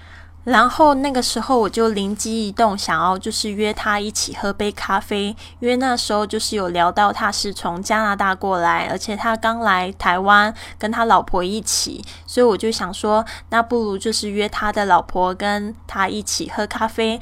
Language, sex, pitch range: Chinese, female, 185-225 Hz